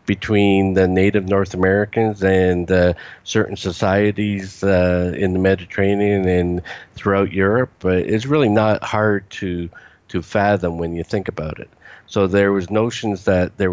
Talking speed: 155 wpm